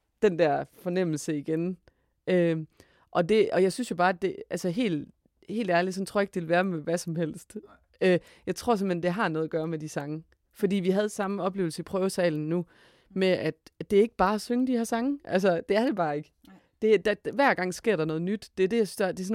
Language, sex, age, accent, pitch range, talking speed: Danish, female, 30-49, native, 160-200 Hz, 260 wpm